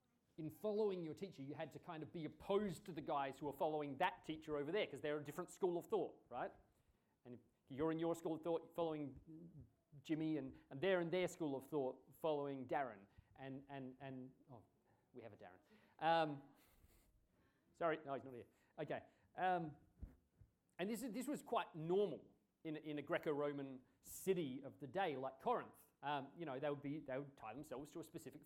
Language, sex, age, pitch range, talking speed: English, male, 40-59, 150-195 Hz, 200 wpm